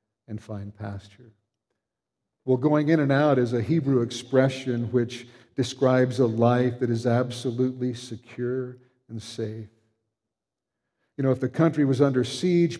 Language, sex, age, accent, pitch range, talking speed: English, male, 50-69, American, 125-145 Hz, 140 wpm